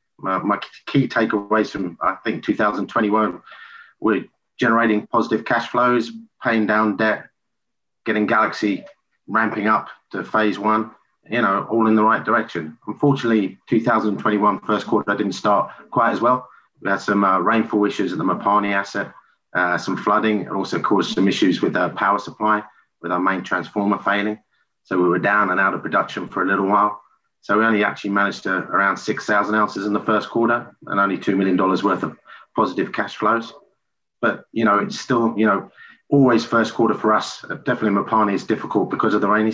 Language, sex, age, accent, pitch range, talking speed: English, male, 30-49, British, 100-110 Hz, 180 wpm